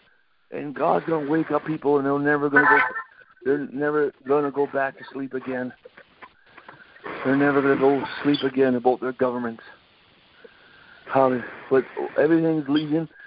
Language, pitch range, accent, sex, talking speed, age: English, 130-160 Hz, American, male, 145 wpm, 60-79